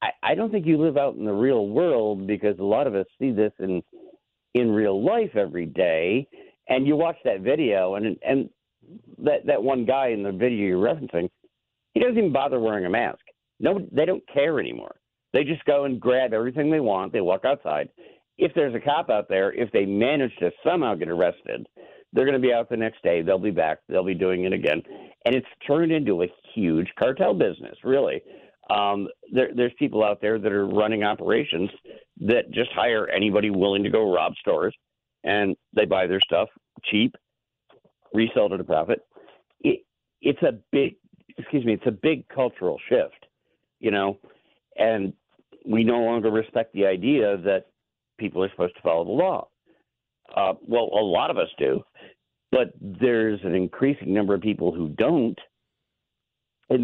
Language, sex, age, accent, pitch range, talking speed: English, male, 50-69, American, 100-140 Hz, 180 wpm